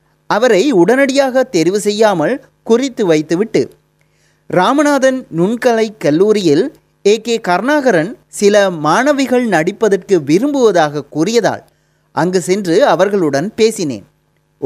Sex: male